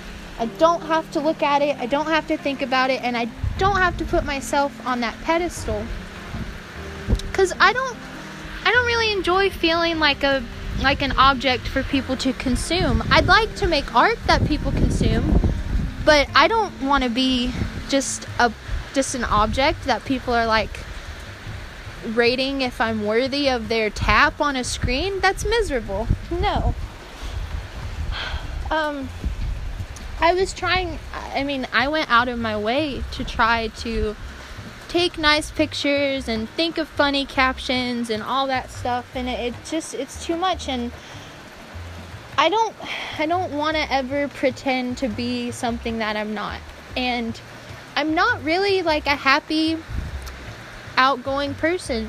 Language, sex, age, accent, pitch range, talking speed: English, female, 20-39, American, 240-325 Hz, 155 wpm